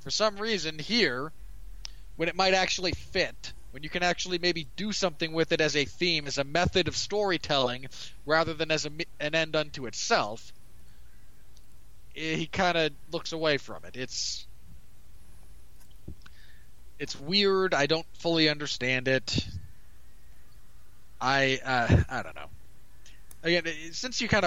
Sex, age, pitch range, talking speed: male, 20-39, 130-170 Hz, 145 wpm